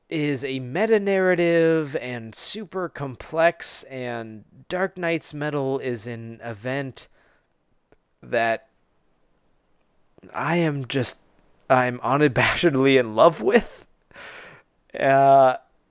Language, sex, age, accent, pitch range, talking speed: English, male, 20-39, American, 125-165 Hz, 90 wpm